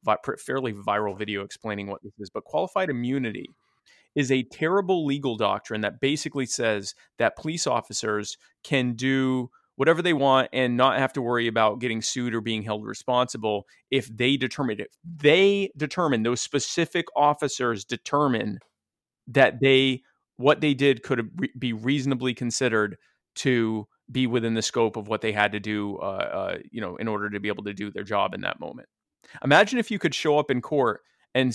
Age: 30-49